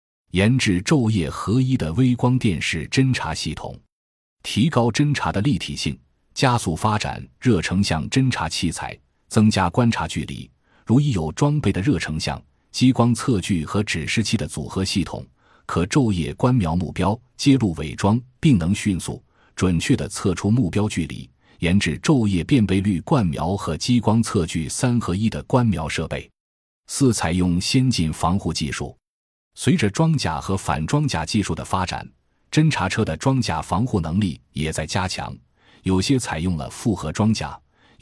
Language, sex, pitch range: Chinese, male, 80-120 Hz